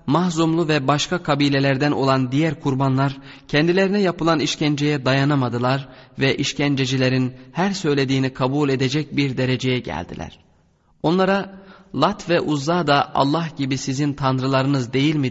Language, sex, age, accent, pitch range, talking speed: Turkish, male, 30-49, native, 130-160 Hz, 120 wpm